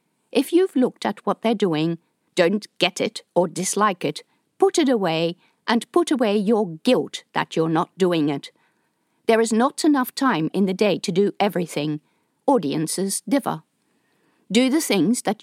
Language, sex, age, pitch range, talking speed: English, female, 50-69, 175-255 Hz, 165 wpm